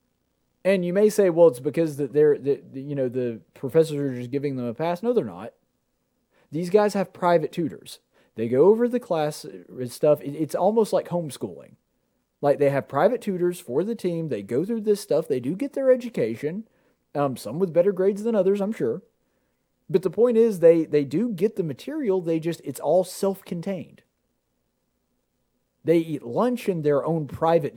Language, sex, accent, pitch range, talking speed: English, male, American, 145-200 Hz, 185 wpm